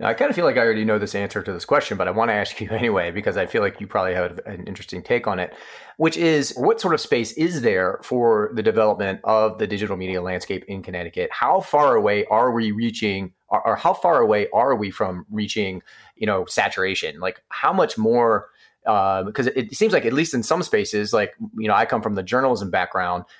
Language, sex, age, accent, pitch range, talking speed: English, male, 30-49, American, 105-170 Hz, 230 wpm